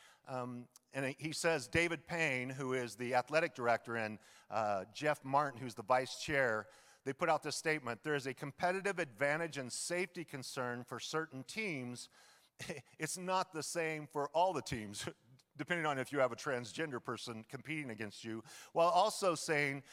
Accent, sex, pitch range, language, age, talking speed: American, male, 125-165 Hz, English, 40-59, 170 wpm